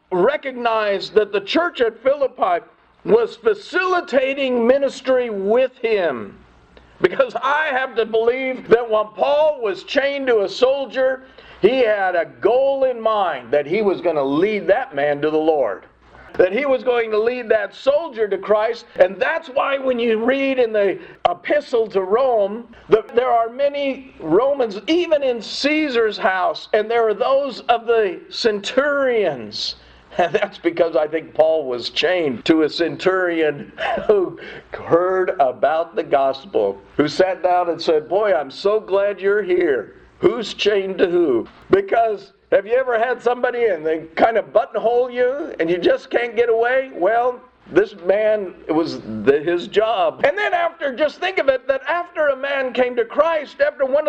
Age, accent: 50-69, American